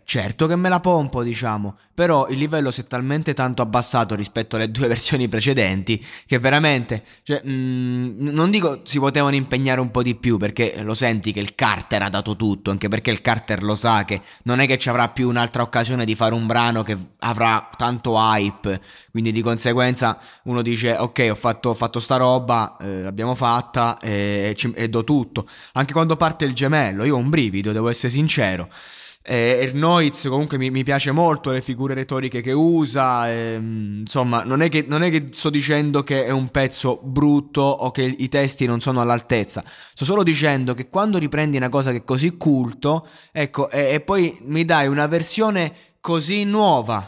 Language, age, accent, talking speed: Italian, 20-39, native, 185 wpm